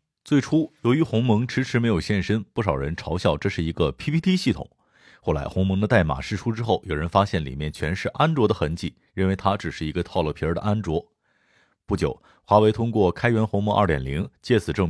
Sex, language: male, Chinese